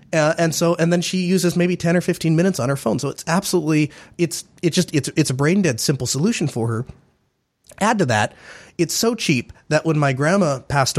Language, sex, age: English, male, 30-49